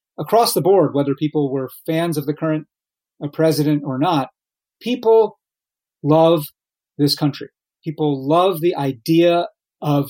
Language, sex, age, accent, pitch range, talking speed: English, male, 30-49, American, 140-170 Hz, 130 wpm